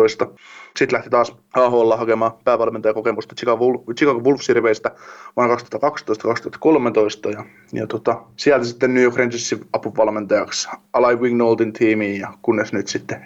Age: 20-39